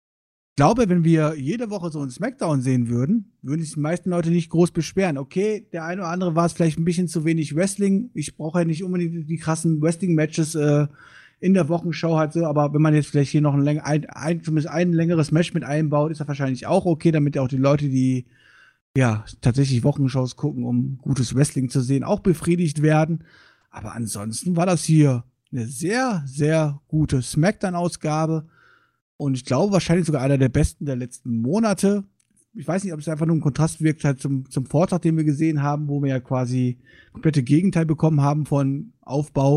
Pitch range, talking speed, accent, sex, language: 140-170 Hz, 195 wpm, German, male, German